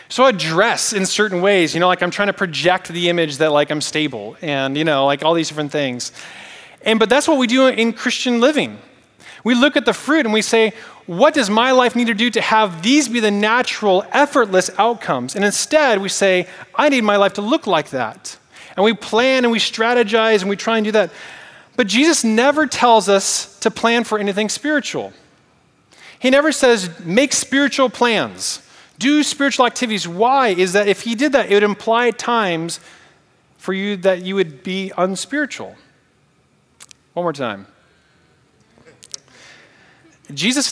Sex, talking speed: male, 185 wpm